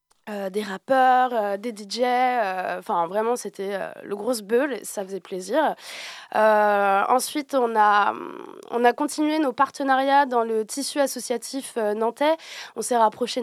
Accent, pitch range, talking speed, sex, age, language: French, 215-255 Hz, 155 wpm, female, 20-39, French